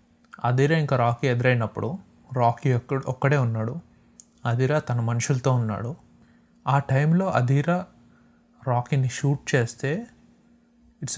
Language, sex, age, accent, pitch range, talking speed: Telugu, male, 30-49, native, 120-165 Hz, 100 wpm